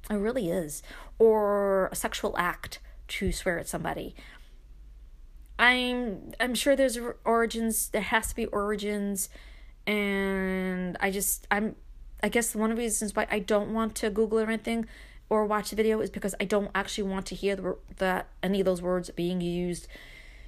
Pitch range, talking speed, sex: 170-225 Hz, 175 wpm, female